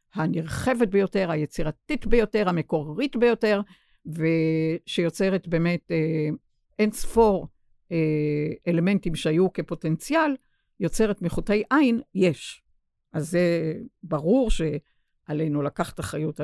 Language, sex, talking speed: Hebrew, female, 90 wpm